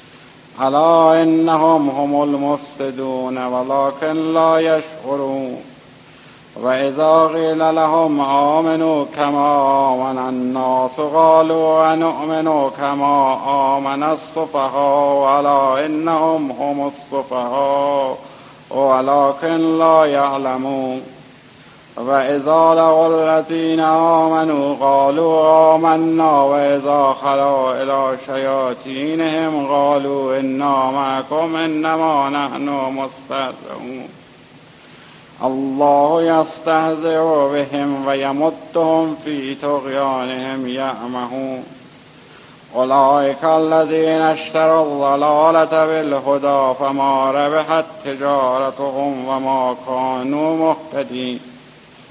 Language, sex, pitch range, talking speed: Persian, male, 135-160 Hz, 75 wpm